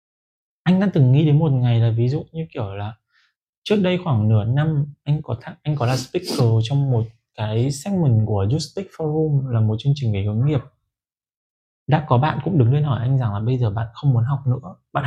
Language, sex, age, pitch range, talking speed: Vietnamese, male, 20-39, 120-160 Hz, 225 wpm